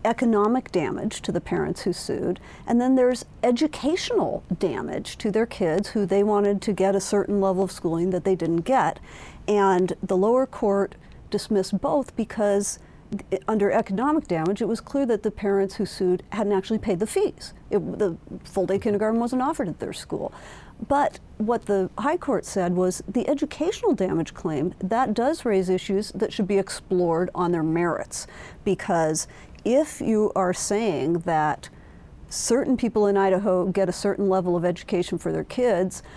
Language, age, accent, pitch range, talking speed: English, 50-69, American, 185-230 Hz, 170 wpm